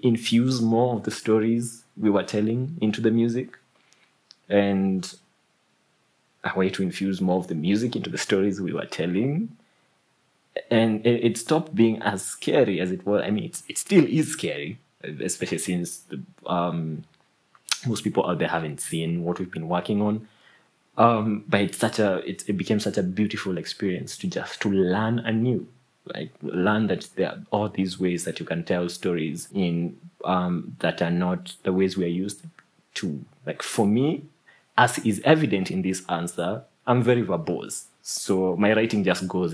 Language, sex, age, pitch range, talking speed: English, male, 20-39, 95-120 Hz, 170 wpm